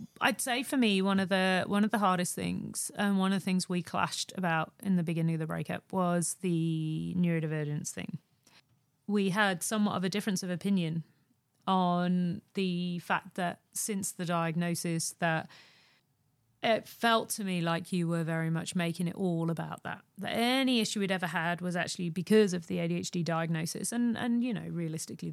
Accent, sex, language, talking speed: British, female, English, 185 wpm